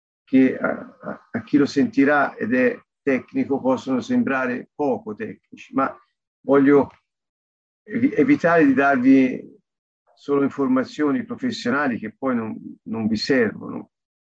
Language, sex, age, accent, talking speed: Italian, male, 50-69, native, 115 wpm